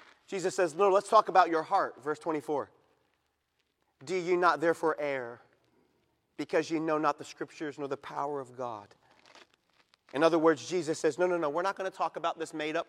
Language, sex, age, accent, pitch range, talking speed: English, male, 40-59, American, 190-265 Hz, 195 wpm